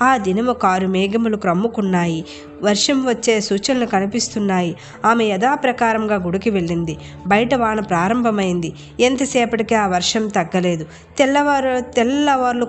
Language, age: Telugu, 20-39